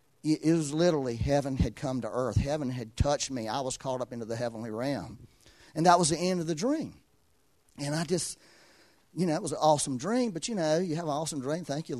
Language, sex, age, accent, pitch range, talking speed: English, male, 40-59, American, 115-155 Hz, 240 wpm